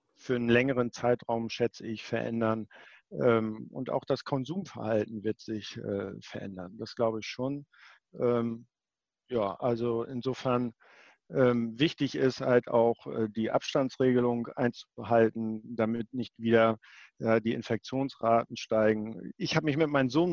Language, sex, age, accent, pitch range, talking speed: German, male, 50-69, German, 115-135 Hz, 120 wpm